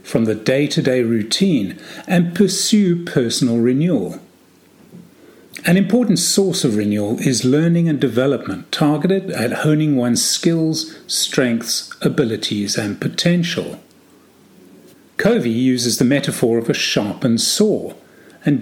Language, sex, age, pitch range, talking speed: English, male, 40-59, 120-170 Hz, 115 wpm